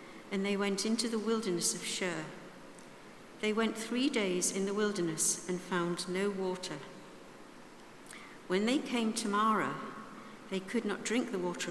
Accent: British